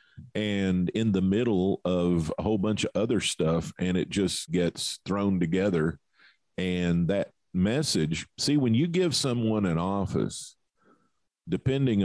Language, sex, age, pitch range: English, male, 50-69, 90-120 Hz